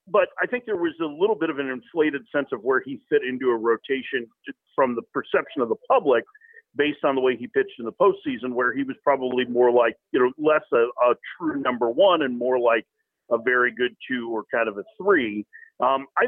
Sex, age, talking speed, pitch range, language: male, 40-59, 230 wpm, 135-220 Hz, English